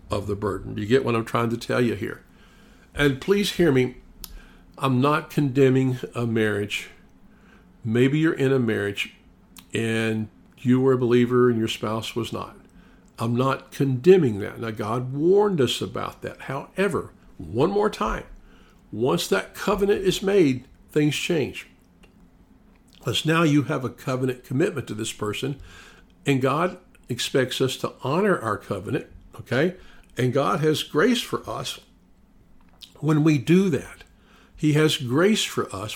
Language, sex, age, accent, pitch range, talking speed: English, male, 50-69, American, 110-150 Hz, 155 wpm